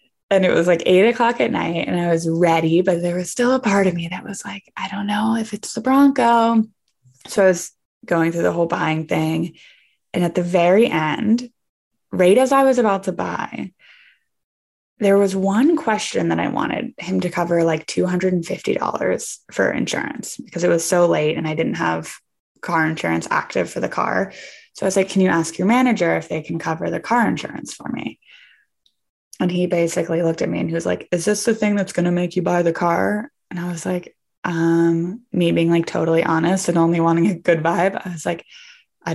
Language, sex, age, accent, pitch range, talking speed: English, female, 10-29, American, 165-200 Hz, 215 wpm